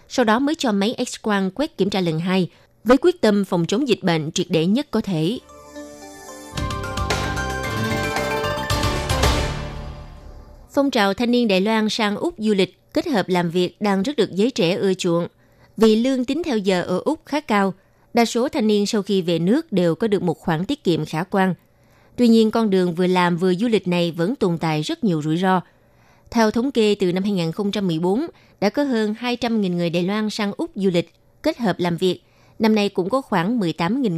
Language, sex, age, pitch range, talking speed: Vietnamese, female, 20-39, 175-230 Hz, 200 wpm